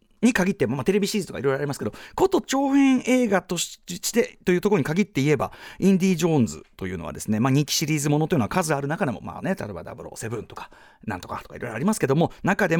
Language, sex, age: Japanese, male, 40-59